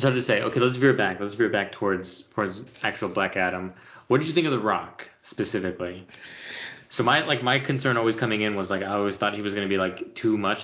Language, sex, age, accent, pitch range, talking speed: English, male, 20-39, American, 100-125 Hz, 250 wpm